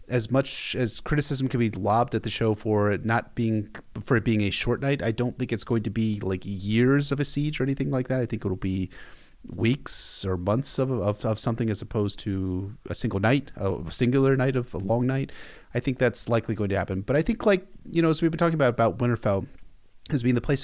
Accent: American